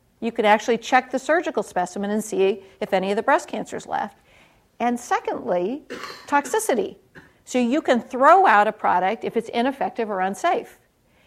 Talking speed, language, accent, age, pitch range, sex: 165 wpm, English, American, 50-69, 200-265 Hz, female